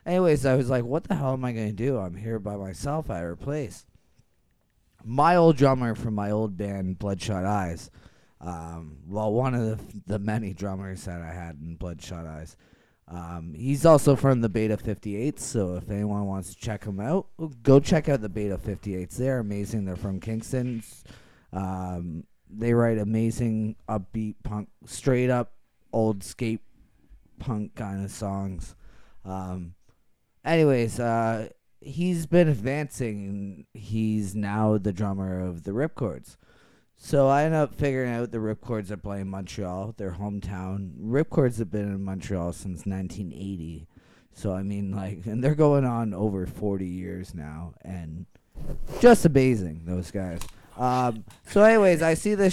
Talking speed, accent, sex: 160 wpm, American, male